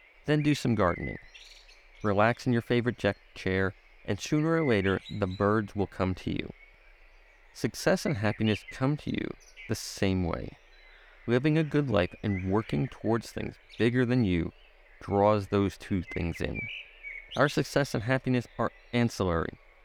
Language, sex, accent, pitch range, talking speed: English, male, American, 95-115 Hz, 150 wpm